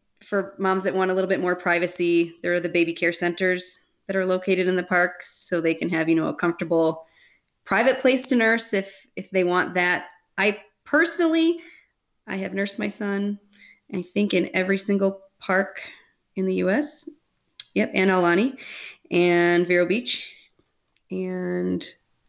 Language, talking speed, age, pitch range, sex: English, 165 wpm, 20-39, 170-195 Hz, female